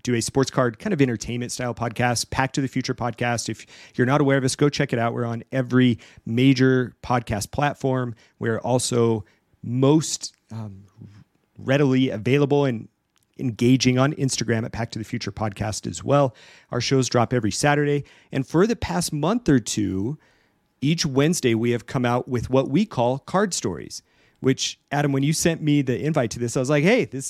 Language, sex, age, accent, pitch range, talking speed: English, male, 40-59, American, 115-145 Hz, 190 wpm